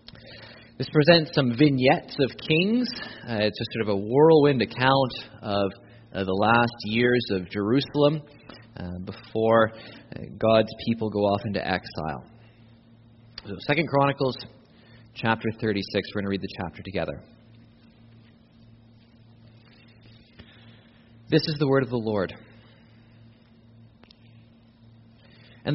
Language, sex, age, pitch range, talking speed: English, male, 30-49, 115-140 Hz, 115 wpm